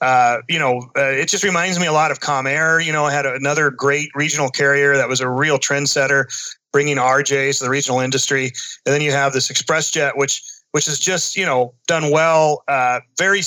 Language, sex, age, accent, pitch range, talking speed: English, male, 30-49, American, 135-165 Hz, 220 wpm